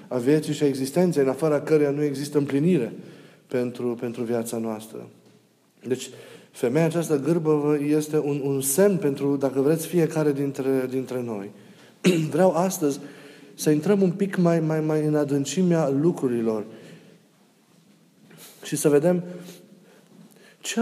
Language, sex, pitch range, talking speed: Romanian, male, 135-165 Hz, 135 wpm